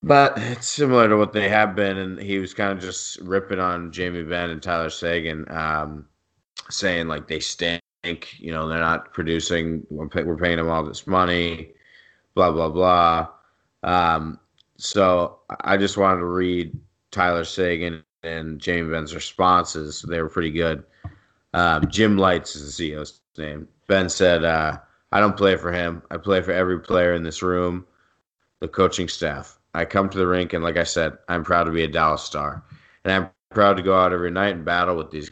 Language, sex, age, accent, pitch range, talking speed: English, male, 20-39, American, 80-95 Hz, 190 wpm